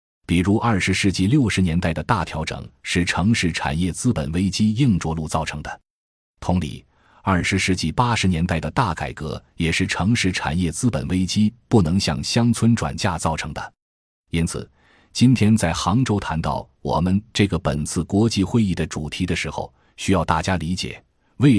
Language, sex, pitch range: Chinese, male, 80-110 Hz